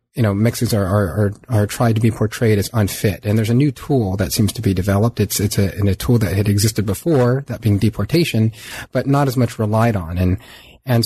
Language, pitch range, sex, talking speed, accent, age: English, 105-120 Hz, male, 235 wpm, American, 30-49